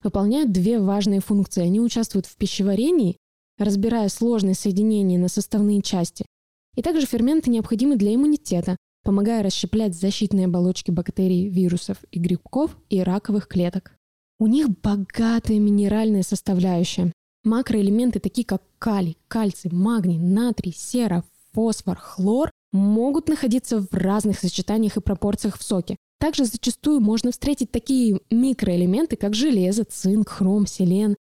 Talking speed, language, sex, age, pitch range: 125 wpm, Russian, female, 20-39, 190-230 Hz